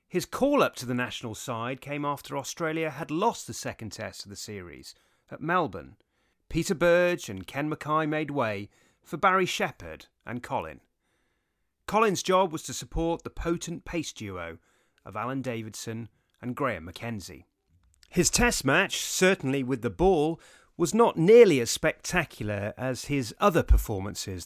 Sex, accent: male, British